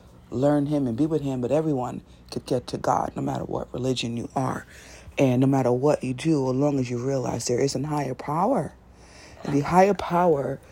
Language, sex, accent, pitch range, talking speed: English, female, American, 120-145 Hz, 205 wpm